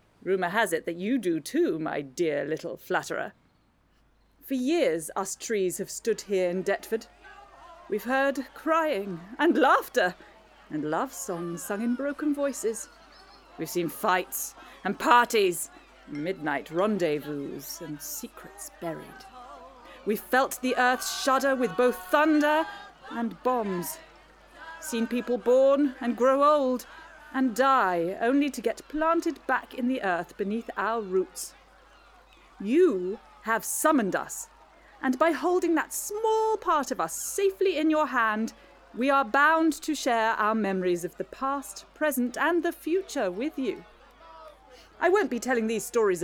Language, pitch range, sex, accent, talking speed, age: English, 210-315 Hz, female, British, 140 wpm, 30-49